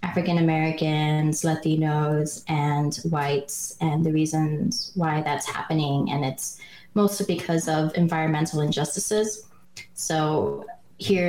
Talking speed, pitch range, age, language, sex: 100 wpm, 155-180 Hz, 20-39, English, female